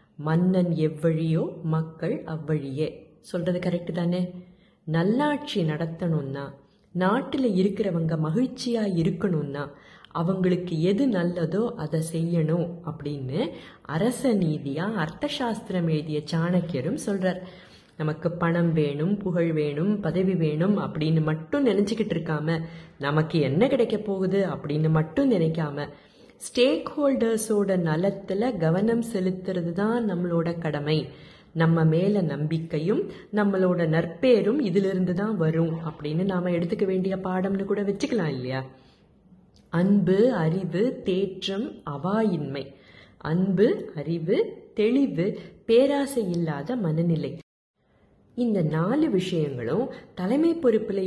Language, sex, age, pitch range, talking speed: Tamil, female, 30-49, 160-205 Hz, 95 wpm